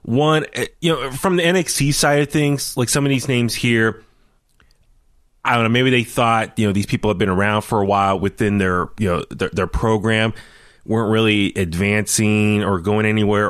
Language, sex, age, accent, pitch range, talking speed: English, male, 20-39, American, 105-145 Hz, 195 wpm